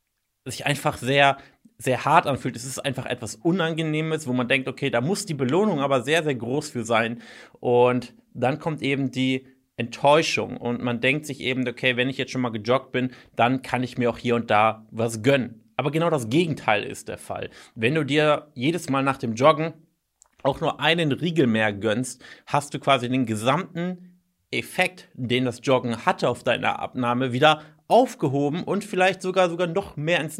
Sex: male